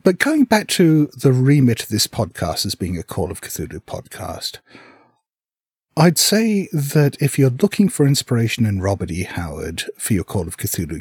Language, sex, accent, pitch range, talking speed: English, male, British, 95-140 Hz, 180 wpm